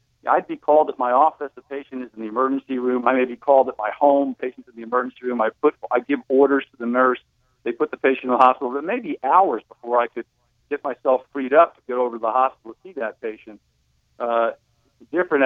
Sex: male